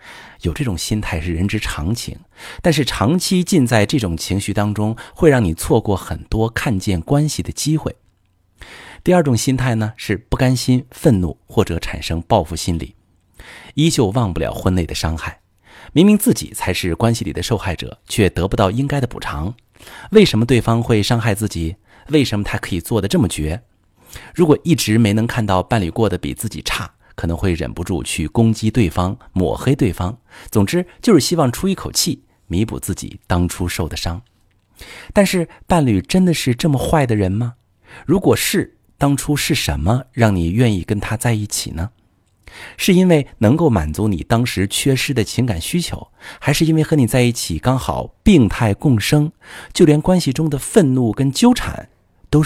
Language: Chinese